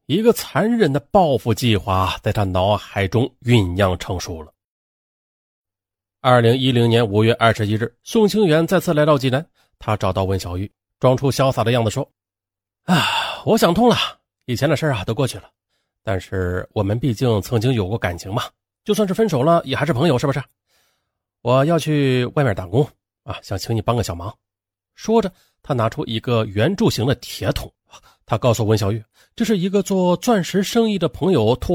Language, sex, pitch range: Chinese, male, 105-170 Hz